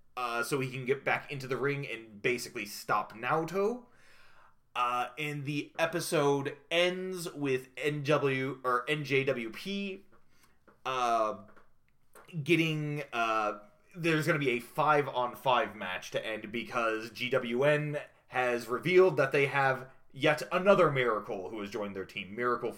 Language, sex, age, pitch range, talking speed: English, male, 30-49, 125-180 Hz, 130 wpm